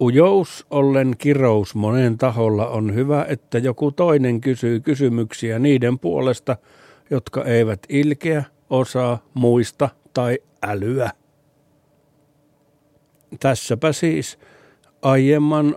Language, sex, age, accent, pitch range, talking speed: Finnish, male, 60-79, native, 110-145 Hz, 90 wpm